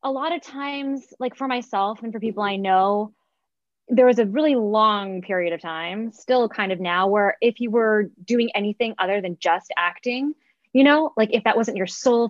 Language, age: English, 20-39